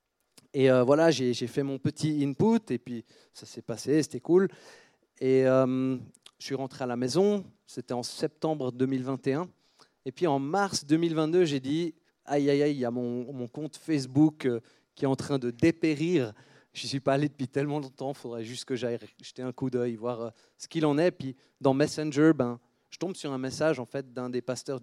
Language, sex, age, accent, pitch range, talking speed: French, male, 30-49, French, 125-155 Hz, 210 wpm